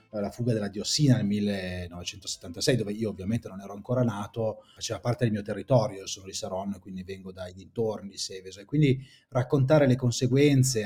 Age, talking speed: 30-49, 175 wpm